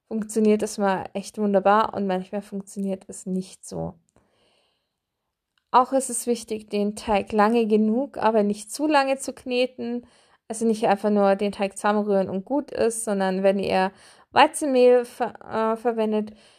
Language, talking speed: German, 150 wpm